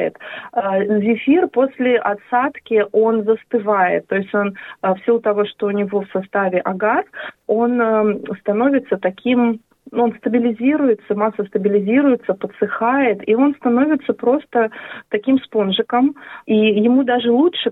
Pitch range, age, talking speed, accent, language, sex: 190-230 Hz, 20-39, 120 wpm, native, Russian, female